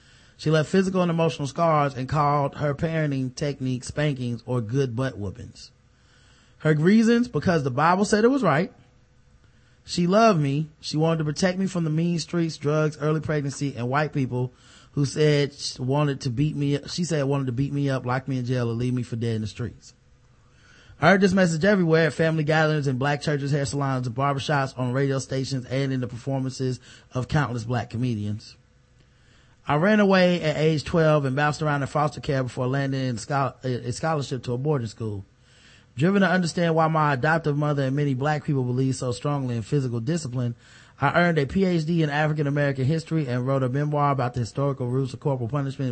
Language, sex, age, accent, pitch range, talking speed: English, male, 30-49, American, 125-155 Hz, 200 wpm